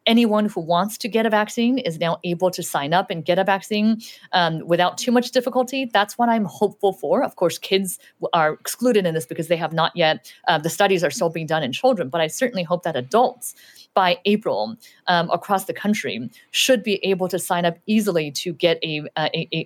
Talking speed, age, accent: 215 wpm, 30-49, American